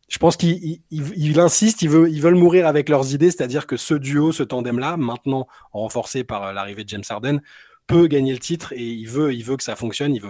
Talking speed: 235 wpm